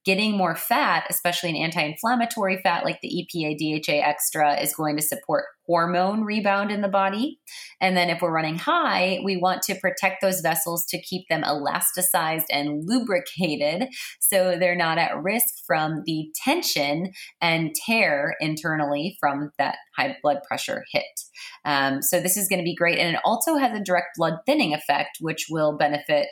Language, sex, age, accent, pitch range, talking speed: English, female, 20-39, American, 150-185 Hz, 175 wpm